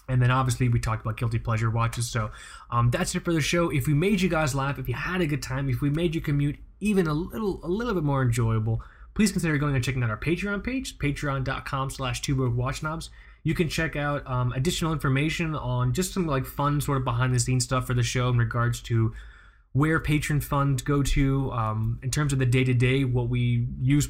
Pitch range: 120-150 Hz